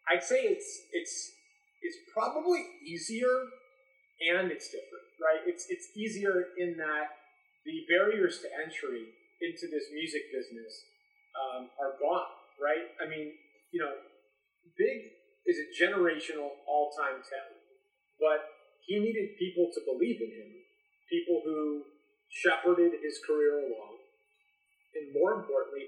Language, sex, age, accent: English, male, 30-49, American